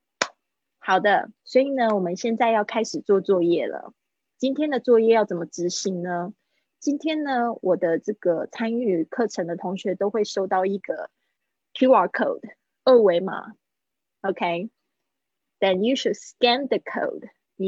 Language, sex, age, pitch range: Chinese, female, 20-39, 185-245 Hz